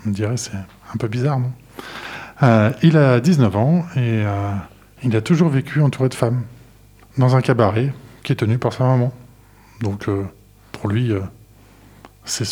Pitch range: 105-130 Hz